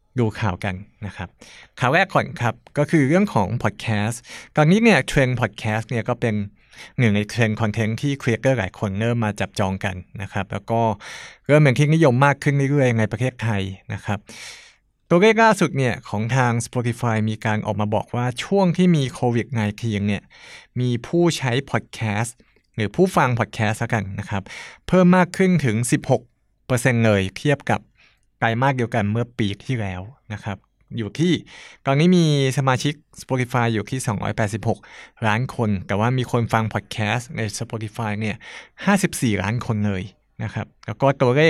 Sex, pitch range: male, 110-140 Hz